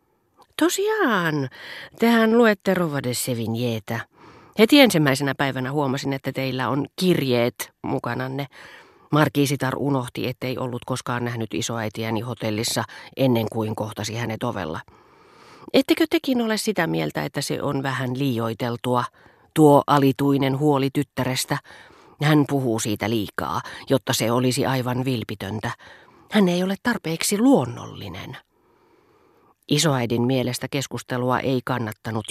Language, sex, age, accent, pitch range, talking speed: Finnish, female, 40-59, native, 120-150 Hz, 115 wpm